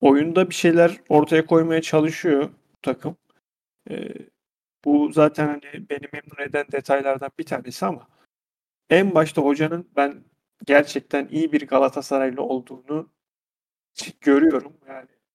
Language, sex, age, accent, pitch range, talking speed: Turkish, male, 40-59, native, 140-160 Hz, 115 wpm